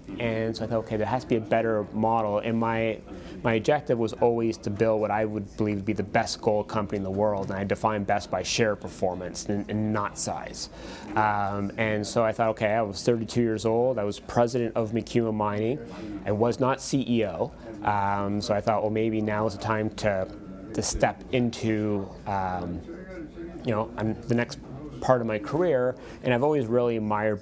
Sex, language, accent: male, English, American